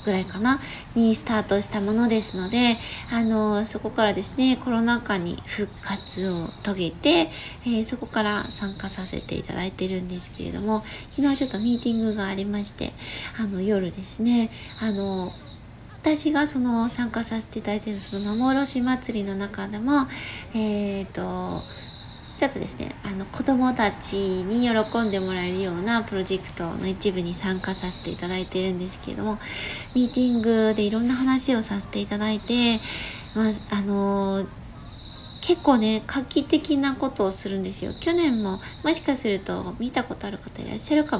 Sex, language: female, Japanese